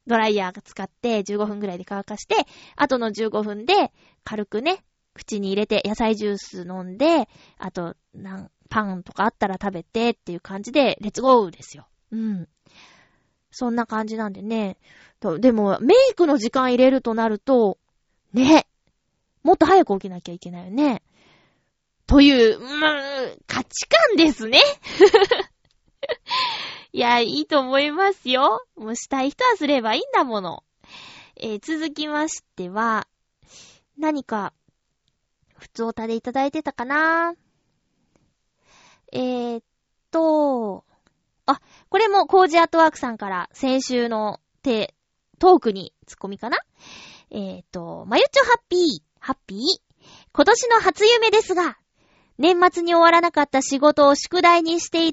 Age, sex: 20-39, female